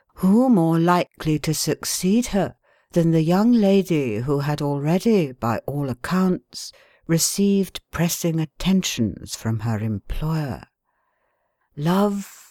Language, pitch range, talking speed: English, 140-185 Hz, 110 wpm